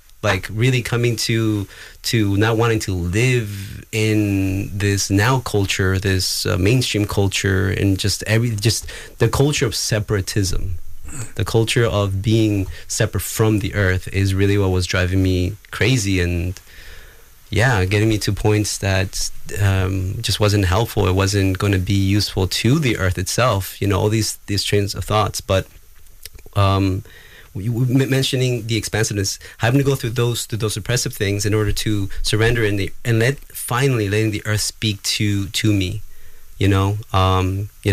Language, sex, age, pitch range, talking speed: English, male, 20-39, 95-110 Hz, 165 wpm